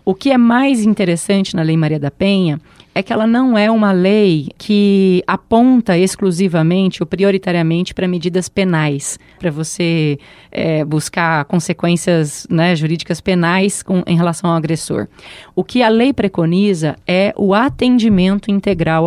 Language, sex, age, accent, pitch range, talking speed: Portuguese, female, 30-49, Brazilian, 170-220 Hz, 140 wpm